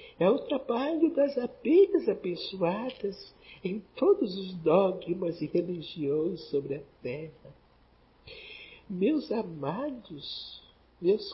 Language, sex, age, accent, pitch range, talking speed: Portuguese, male, 60-79, Brazilian, 165-245 Hz, 95 wpm